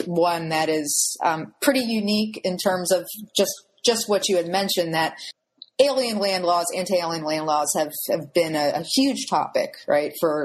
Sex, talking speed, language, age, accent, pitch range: female, 180 wpm, English, 30-49, American, 155-210 Hz